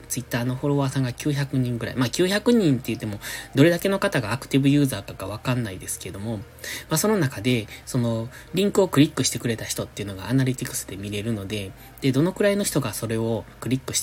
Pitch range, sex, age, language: 115-150 Hz, male, 20-39, Japanese